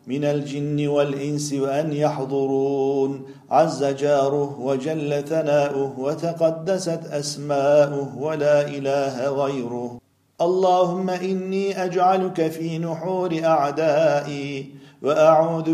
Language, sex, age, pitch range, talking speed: Turkish, male, 50-69, 140-180 Hz, 80 wpm